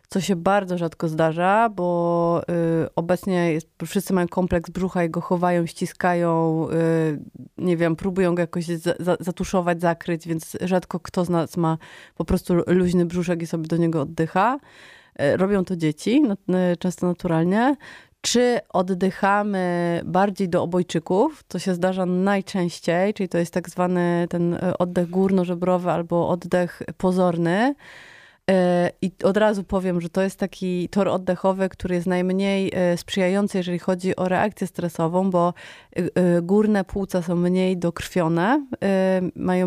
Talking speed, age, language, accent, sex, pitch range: 140 wpm, 30-49, Polish, native, female, 170-190 Hz